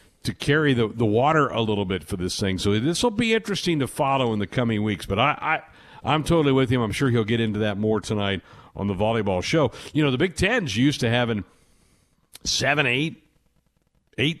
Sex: male